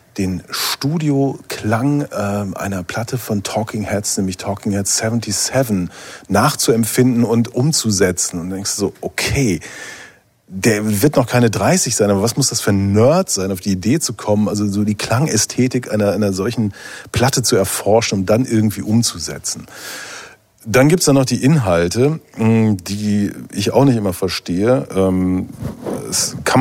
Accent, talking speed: German, 155 wpm